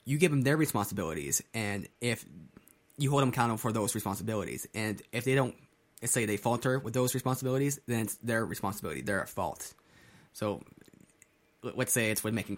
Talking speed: 180 wpm